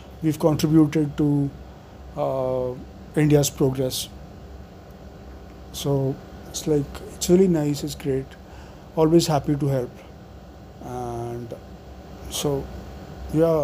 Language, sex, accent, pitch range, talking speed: English, male, Indian, 105-155 Hz, 90 wpm